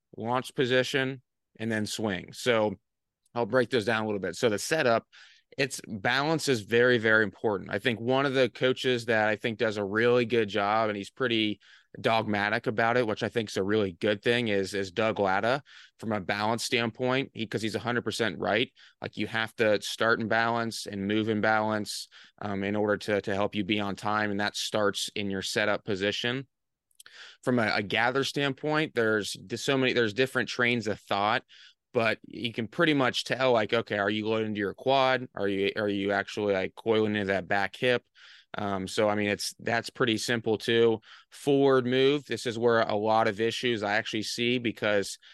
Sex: male